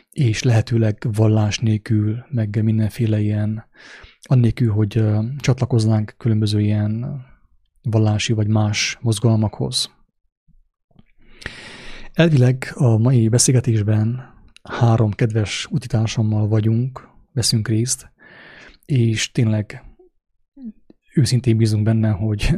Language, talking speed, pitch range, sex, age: English, 85 wpm, 110-125 Hz, male, 30-49